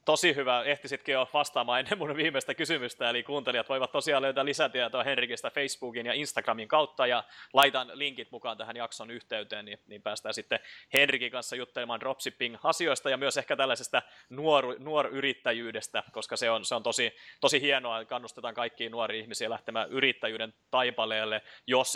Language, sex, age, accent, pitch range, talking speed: Finnish, male, 30-49, native, 115-135 Hz, 155 wpm